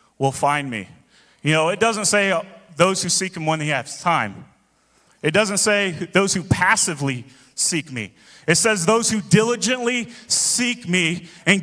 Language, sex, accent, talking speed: English, male, American, 170 wpm